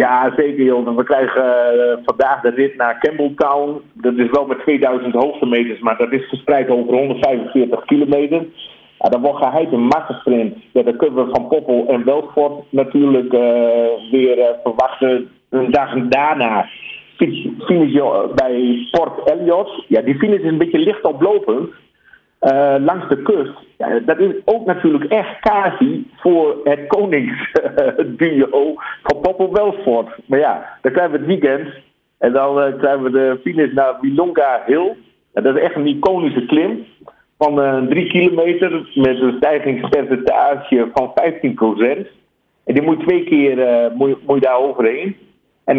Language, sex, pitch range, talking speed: Dutch, male, 130-170 Hz, 160 wpm